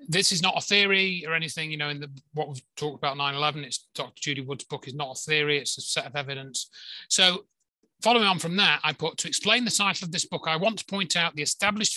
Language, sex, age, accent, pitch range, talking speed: English, male, 30-49, British, 150-190 Hz, 255 wpm